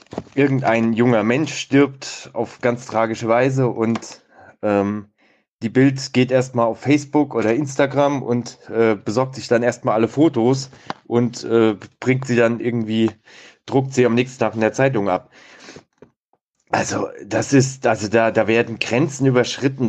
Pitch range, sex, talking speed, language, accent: 105-130 Hz, male, 150 wpm, German, German